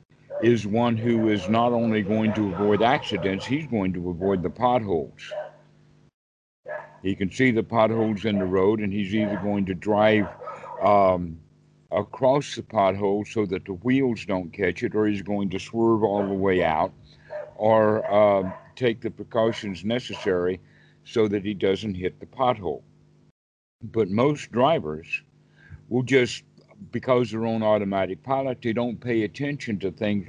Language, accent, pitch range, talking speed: English, American, 90-115 Hz, 155 wpm